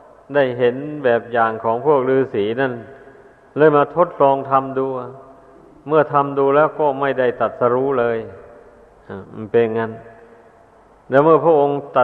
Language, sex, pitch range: Thai, male, 125-140 Hz